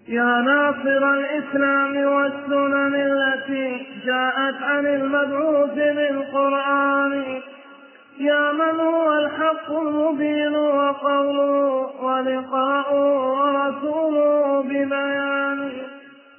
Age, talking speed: 20-39, 65 wpm